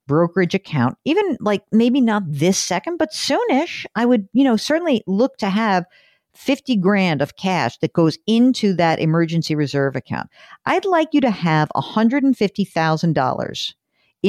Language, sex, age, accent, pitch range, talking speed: English, female, 50-69, American, 155-250 Hz, 145 wpm